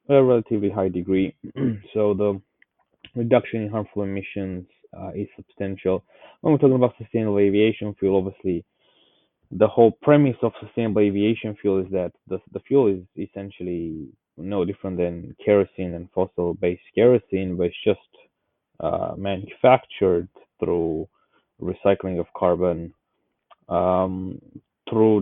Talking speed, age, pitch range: 125 wpm, 20-39, 90-105 Hz